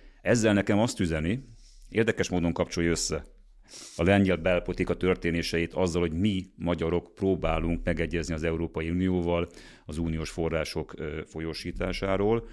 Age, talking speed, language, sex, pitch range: 40-59, 120 wpm, Hungarian, male, 80-95 Hz